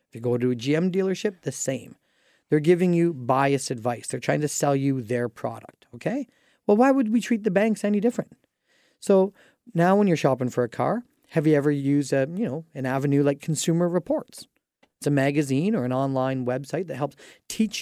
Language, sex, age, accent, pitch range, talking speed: English, male, 40-59, American, 140-195 Hz, 200 wpm